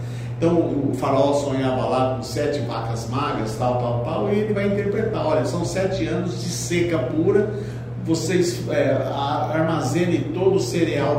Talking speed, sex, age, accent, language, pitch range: 150 wpm, male, 50-69, Brazilian, Portuguese, 120-160 Hz